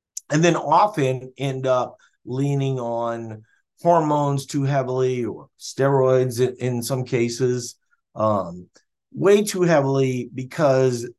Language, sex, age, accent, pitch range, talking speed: English, male, 50-69, American, 115-140 Hz, 105 wpm